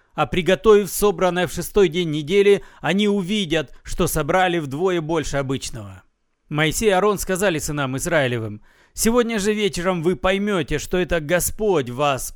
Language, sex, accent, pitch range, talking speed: Russian, male, native, 150-195 Hz, 140 wpm